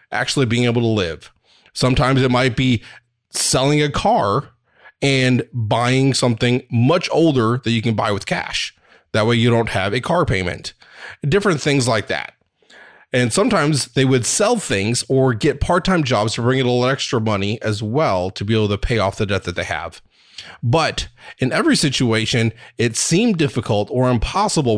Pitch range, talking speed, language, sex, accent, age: 110-135 Hz, 180 wpm, English, male, American, 20-39